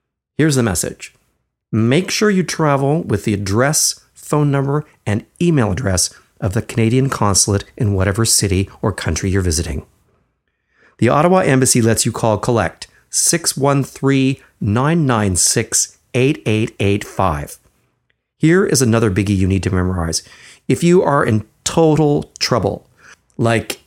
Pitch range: 95-140 Hz